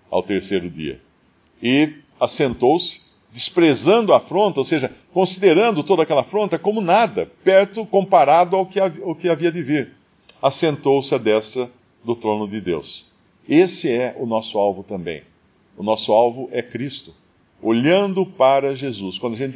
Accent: Brazilian